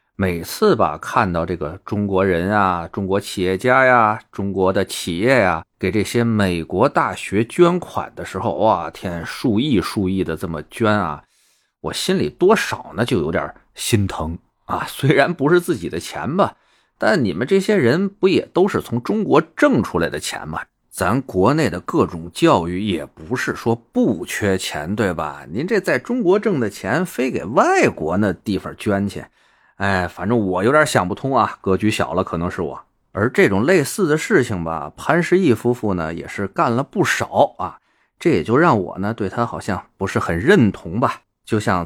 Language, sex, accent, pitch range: Chinese, male, native, 90-115 Hz